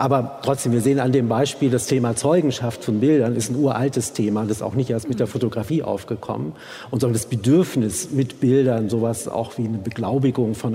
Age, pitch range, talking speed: 50-69, 115-130 Hz, 205 wpm